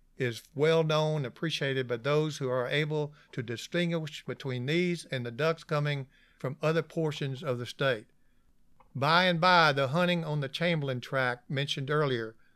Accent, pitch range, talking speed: American, 130-165 Hz, 165 wpm